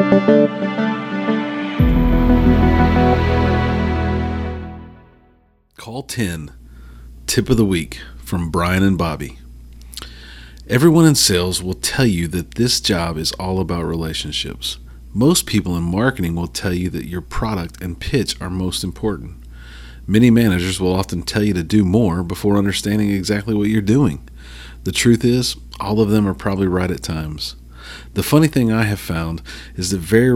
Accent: American